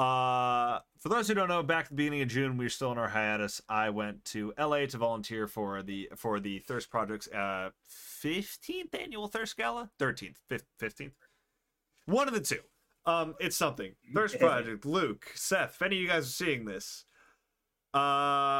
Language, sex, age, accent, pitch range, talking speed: English, male, 30-49, American, 110-160 Hz, 185 wpm